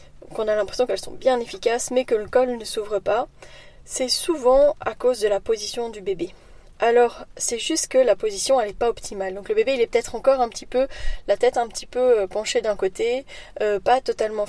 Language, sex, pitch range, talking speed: French, female, 220-285 Hz, 225 wpm